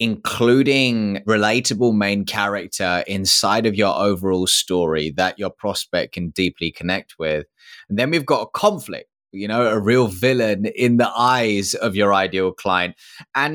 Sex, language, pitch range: male, English, 95-135 Hz